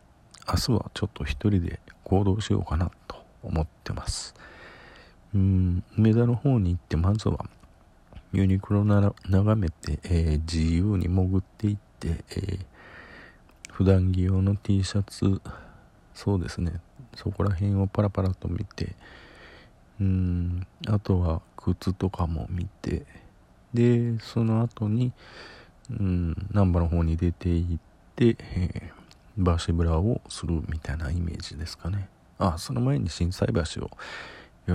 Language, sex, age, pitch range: Japanese, male, 40-59, 85-105 Hz